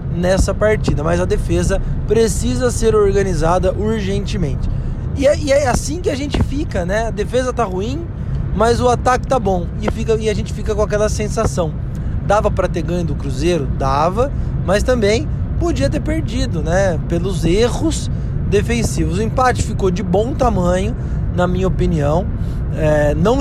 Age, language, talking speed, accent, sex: 20-39, Portuguese, 155 wpm, Brazilian, male